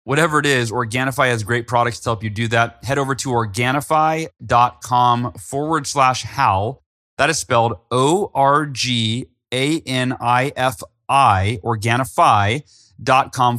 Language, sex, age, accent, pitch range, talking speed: English, male, 30-49, American, 110-140 Hz, 105 wpm